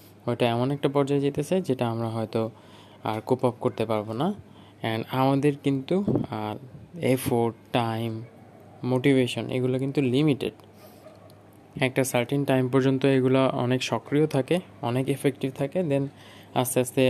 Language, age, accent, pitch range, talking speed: Bengali, 20-39, native, 115-140 Hz, 90 wpm